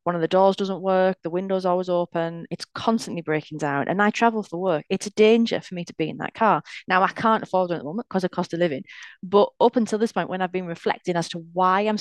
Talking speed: 275 wpm